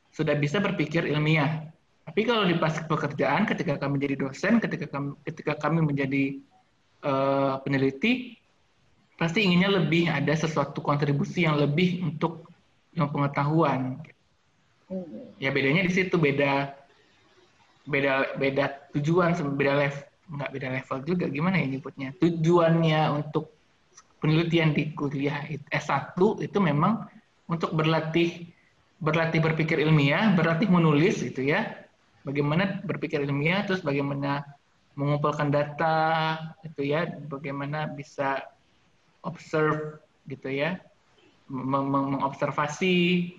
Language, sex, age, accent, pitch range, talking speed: Indonesian, male, 20-39, native, 140-165 Hz, 110 wpm